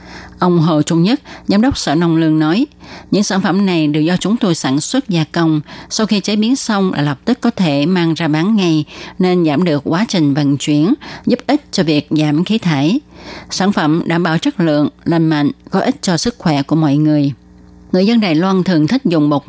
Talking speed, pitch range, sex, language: 230 wpm, 150-200 Hz, female, Vietnamese